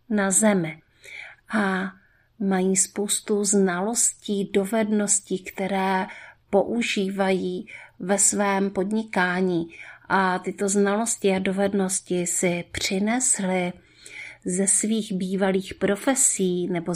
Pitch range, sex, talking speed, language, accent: 190-215 Hz, female, 85 wpm, Czech, native